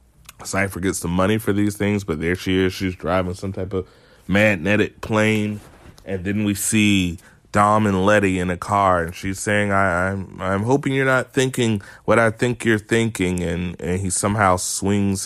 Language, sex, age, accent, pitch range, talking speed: English, male, 20-39, American, 90-105 Hz, 195 wpm